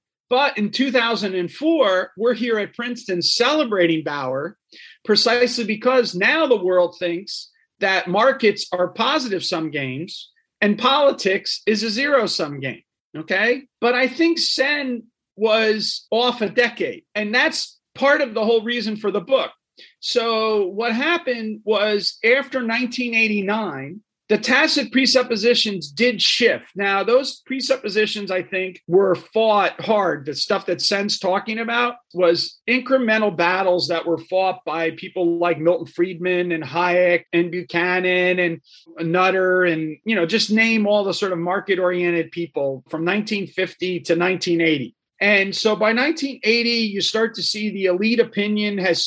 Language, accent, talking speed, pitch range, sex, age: English, American, 140 wpm, 180-235 Hz, male, 40-59